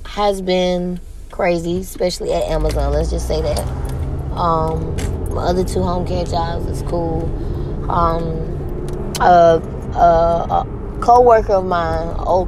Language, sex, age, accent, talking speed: English, female, 20-39, American, 130 wpm